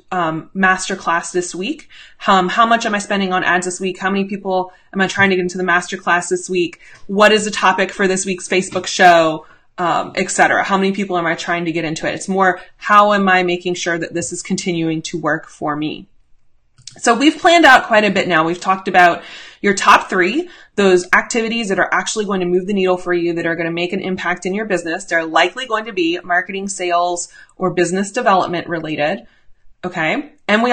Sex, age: female, 20-39